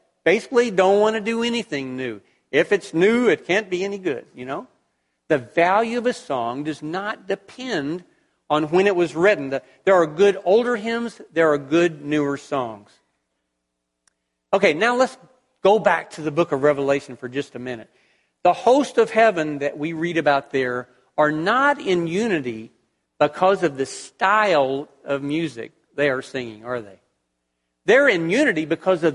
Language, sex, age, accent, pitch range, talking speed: English, male, 50-69, American, 140-200 Hz, 170 wpm